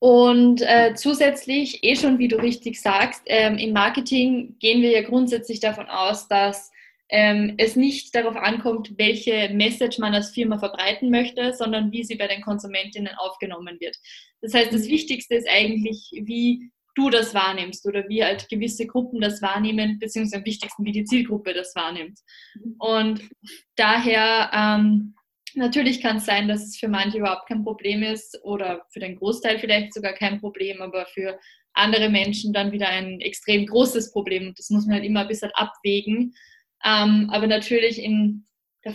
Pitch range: 205-235 Hz